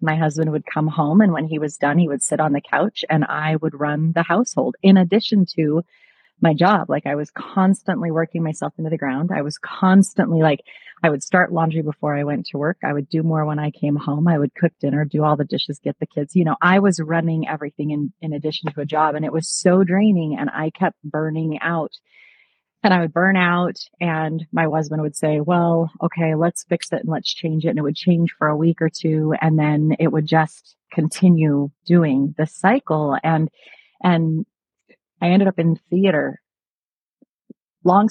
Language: English